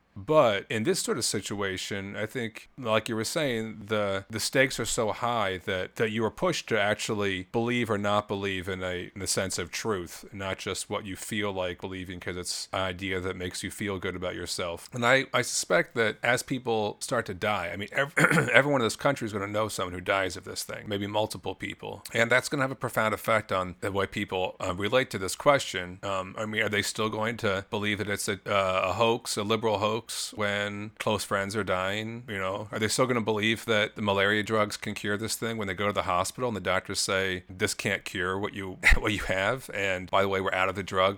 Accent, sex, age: American, male, 40-59